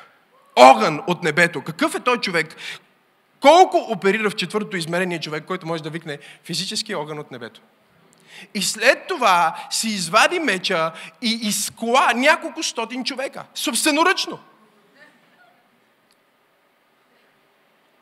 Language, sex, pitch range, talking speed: Bulgarian, male, 205-335 Hz, 110 wpm